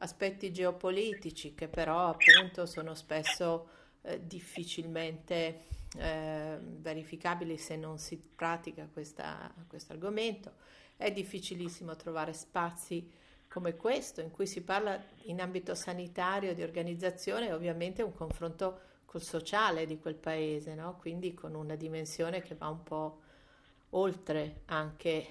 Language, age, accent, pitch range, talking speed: Italian, 40-59, native, 155-180 Hz, 125 wpm